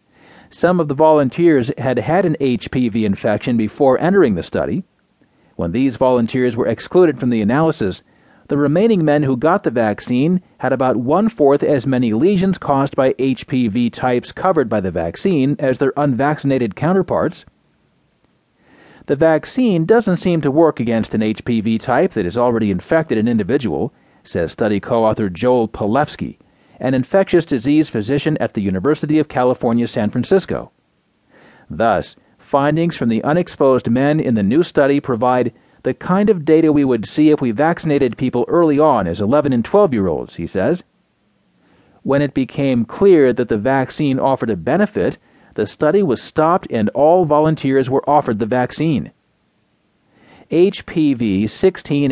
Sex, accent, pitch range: male, American, 120-155 Hz